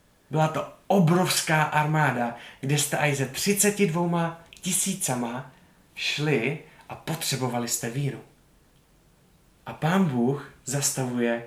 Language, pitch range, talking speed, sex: Czech, 125-165 Hz, 100 wpm, male